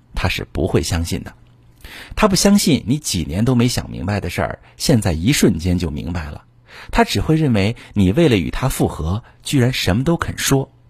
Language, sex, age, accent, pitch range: Chinese, male, 50-69, native, 90-125 Hz